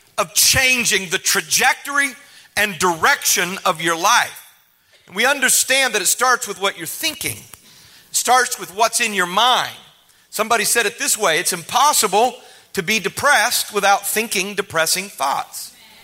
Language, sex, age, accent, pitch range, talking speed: English, male, 40-59, American, 175-230 Hz, 140 wpm